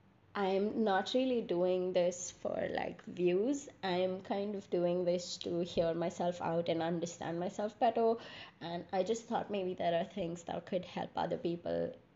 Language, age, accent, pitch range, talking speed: English, 20-39, Indian, 170-200 Hz, 170 wpm